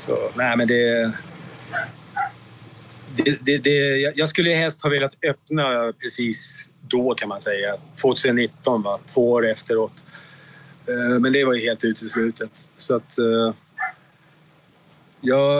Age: 30-49